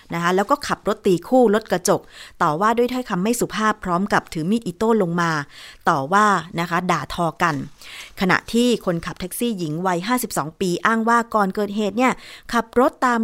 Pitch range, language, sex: 175-235 Hz, Thai, female